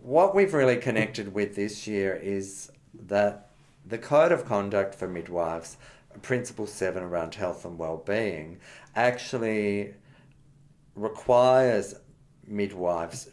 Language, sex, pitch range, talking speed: English, male, 90-120 Hz, 110 wpm